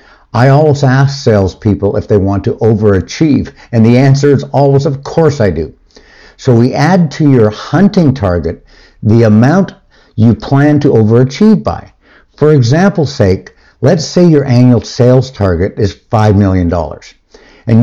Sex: male